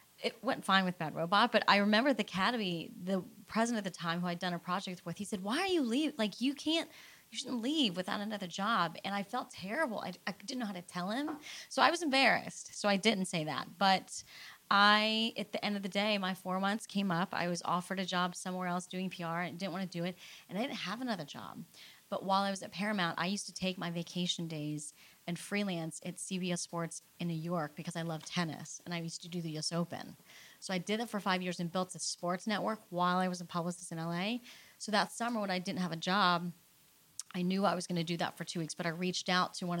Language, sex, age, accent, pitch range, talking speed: English, female, 30-49, American, 175-210 Hz, 255 wpm